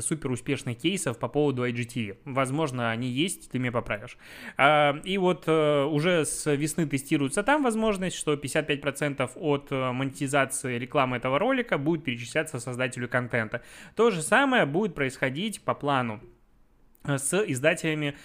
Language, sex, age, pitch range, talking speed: Russian, male, 20-39, 125-155 Hz, 130 wpm